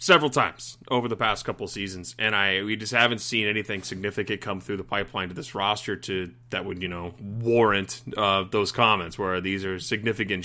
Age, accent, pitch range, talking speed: 30-49, American, 100-125 Hz, 205 wpm